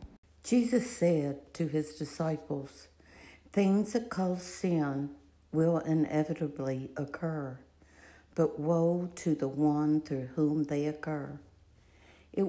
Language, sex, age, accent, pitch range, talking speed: English, female, 60-79, American, 135-170 Hz, 105 wpm